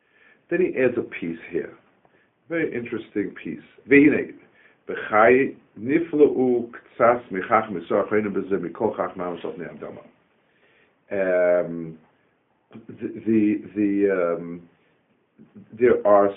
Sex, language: male, English